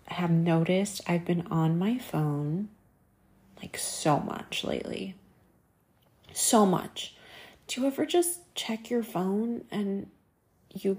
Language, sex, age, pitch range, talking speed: English, female, 30-49, 170-215 Hz, 120 wpm